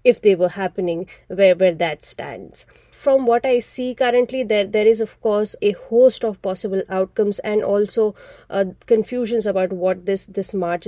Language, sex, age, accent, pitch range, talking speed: English, female, 30-49, Indian, 185-230 Hz, 175 wpm